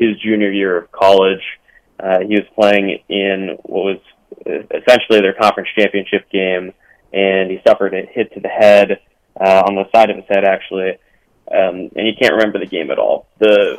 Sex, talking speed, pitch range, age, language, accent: male, 185 wpm, 95-115 Hz, 20-39, English, American